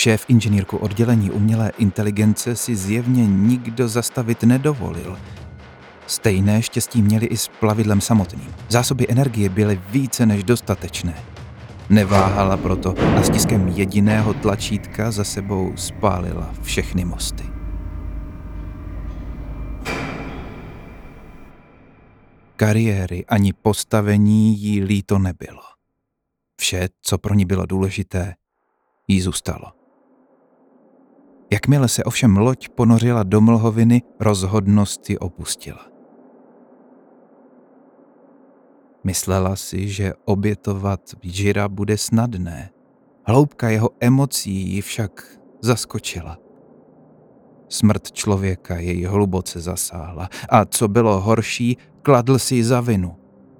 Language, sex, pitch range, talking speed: Czech, male, 95-115 Hz, 95 wpm